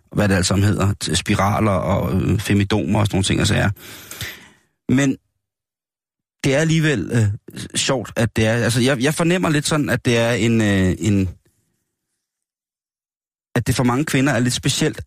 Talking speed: 170 wpm